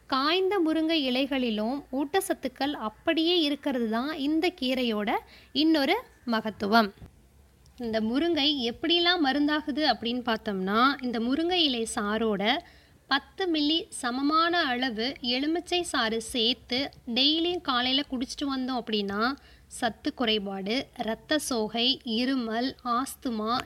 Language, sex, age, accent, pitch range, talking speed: Tamil, female, 20-39, native, 235-305 Hz, 100 wpm